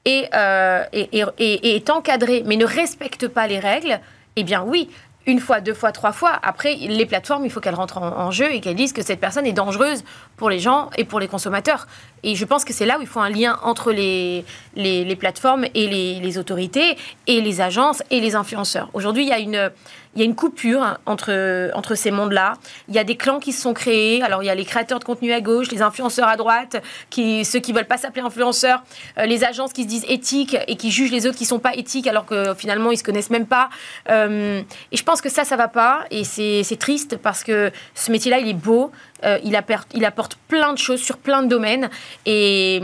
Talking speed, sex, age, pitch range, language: 245 wpm, female, 30-49, 205-255 Hz, French